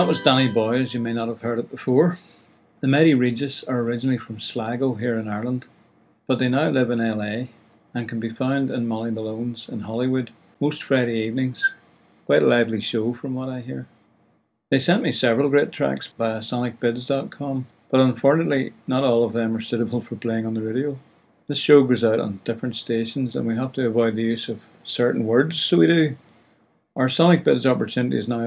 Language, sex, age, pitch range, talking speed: English, male, 60-79, 115-130 Hz, 200 wpm